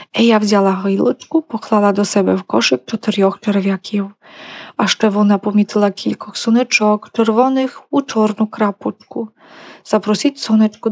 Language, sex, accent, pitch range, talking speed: Ukrainian, female, Polish, 195-230 Hz, 120 wpm